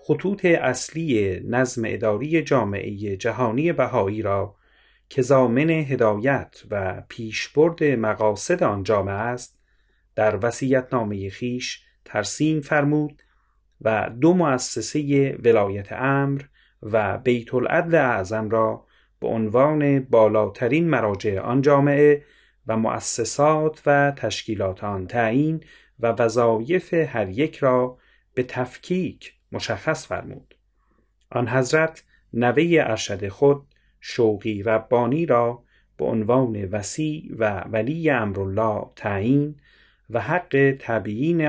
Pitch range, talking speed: 110-145 Hz, 105 wpm